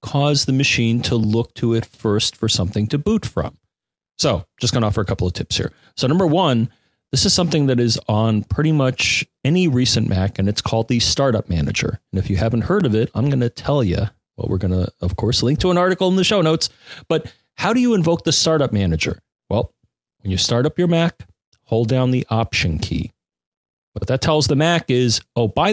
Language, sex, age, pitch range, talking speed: English, male, 30-49, 105-140 Hz, 225 wpm